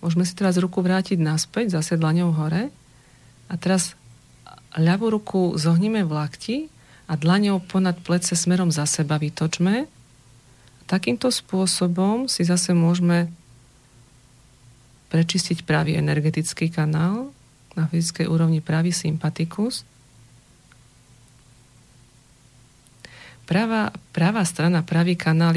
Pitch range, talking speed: 140-175 Hz, 105 wpm